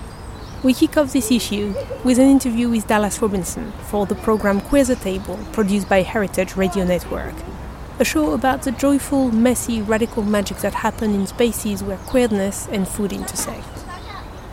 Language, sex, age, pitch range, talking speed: English, female, 30-49, 200-265 Hz, 160 wpm